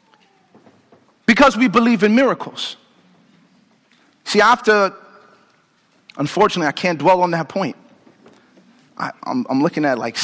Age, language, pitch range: 50-69, English, 205-245 Hz